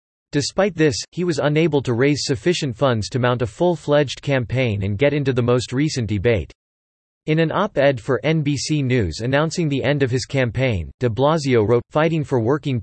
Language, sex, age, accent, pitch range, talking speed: English, male, 30-49, American, 120-150 Hz, 180 wpm